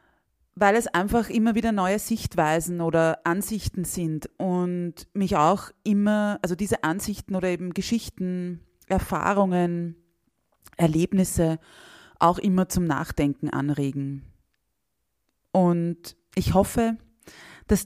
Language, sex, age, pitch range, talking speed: German, female, 30-49, 160-190 Hz, 105 wpm